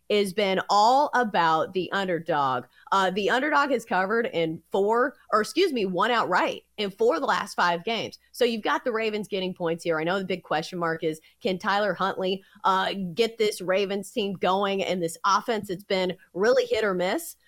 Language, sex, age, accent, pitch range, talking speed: English, female, 30-49, American, 175-240 Hz, 200 wpm